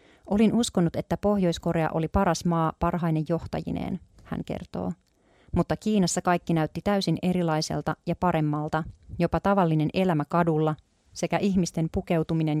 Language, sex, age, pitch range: Finnish, female, 30-49, 155-180 Hz